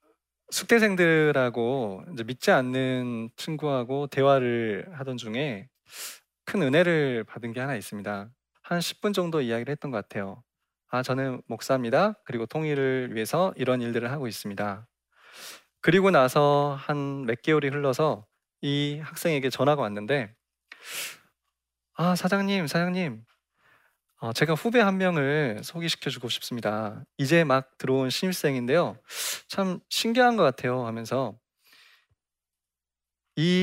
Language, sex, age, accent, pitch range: Korean, male, 20-39, native, 120-160 Hz